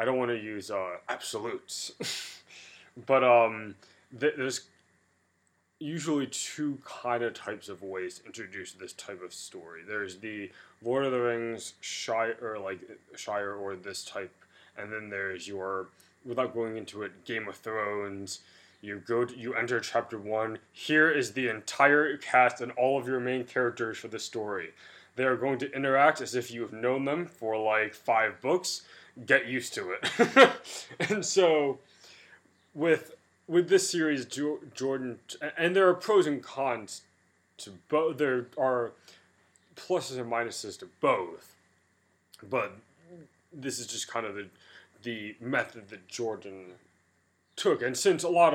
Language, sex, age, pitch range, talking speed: English, male, 20-39, 105-135 Hz, 160 wpm